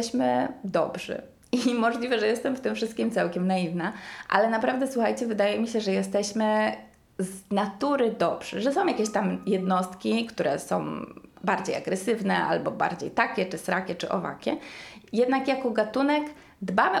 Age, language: 20-39, Polish